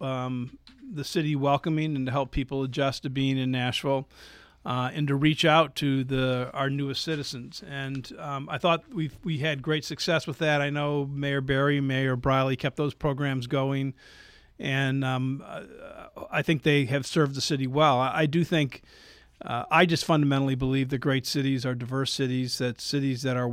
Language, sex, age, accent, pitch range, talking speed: English, male, 50-69, American, 130-145 Hz, 185 wpm